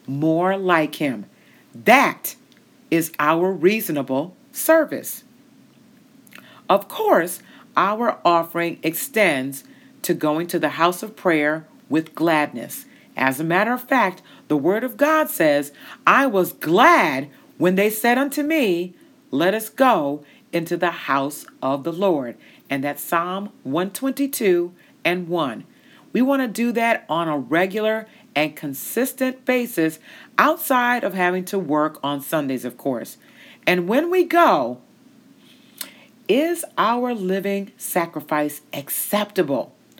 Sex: female